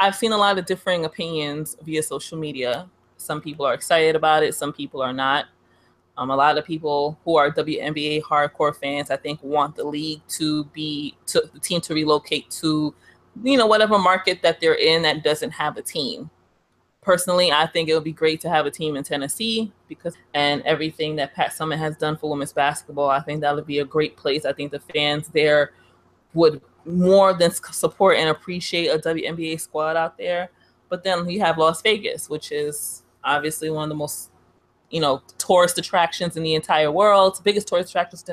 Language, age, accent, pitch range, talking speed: English, 20-39, American, 150-170 Hz, 200 wpm